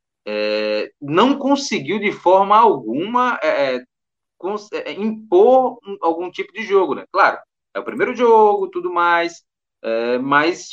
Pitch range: 135-185 Hz